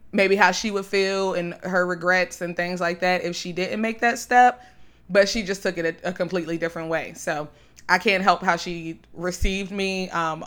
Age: 20-39